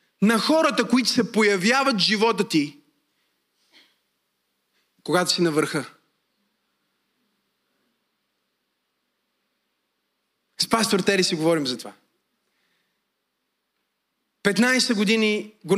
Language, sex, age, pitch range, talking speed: Bulgarian, male, 30-49, 205-315 Hz, 80 wpm